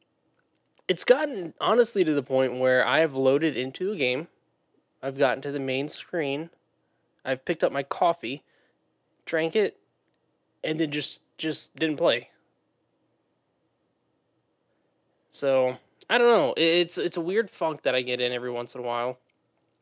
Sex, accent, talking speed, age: male, American, 150 wpm, 20-39